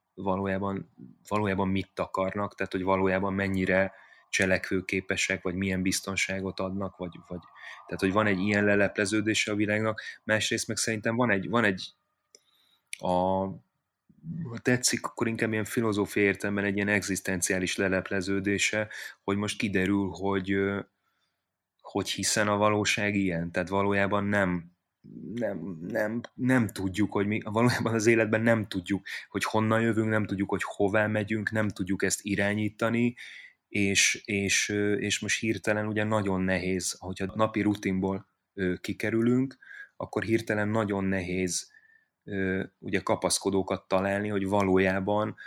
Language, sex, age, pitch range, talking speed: Hungarian, male, 30-49, 95-105 Hz, 130 wpm